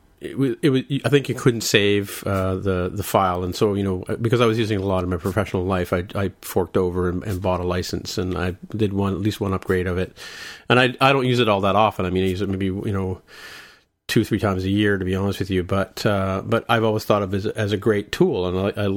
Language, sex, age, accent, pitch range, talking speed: English, male, 40-59, American, 95-110 Hz, 280 wpm